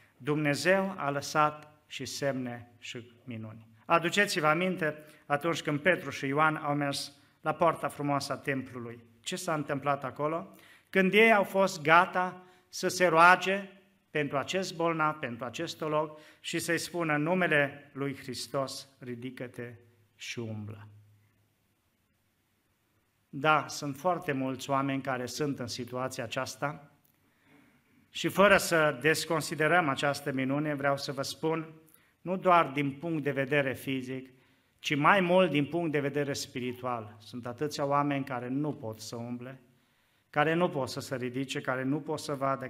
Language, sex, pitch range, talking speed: Romanian, male, 130-160 Hz, 145 wpm